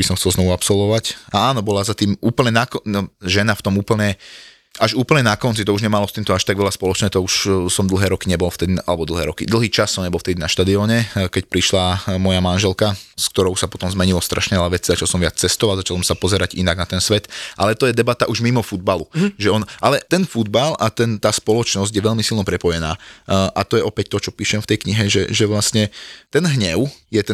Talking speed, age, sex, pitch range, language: 235 wpm, 20-39, male, 95-110 Hz, Slovak